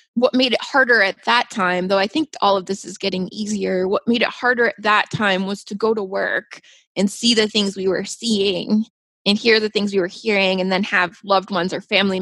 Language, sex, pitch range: English, female, 185-215 Hz